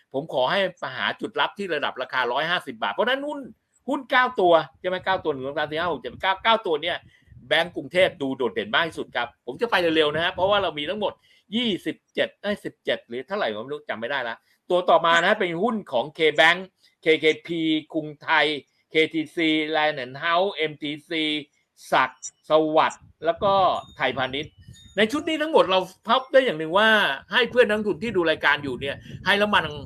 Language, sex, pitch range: Thai, male, 155-215 Hz